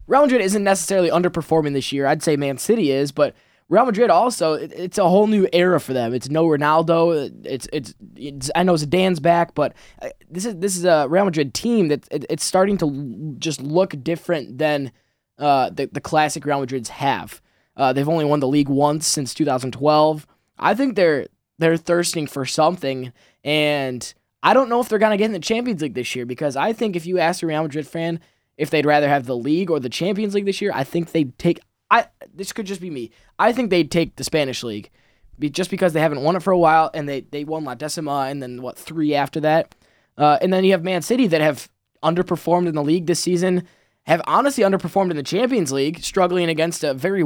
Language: English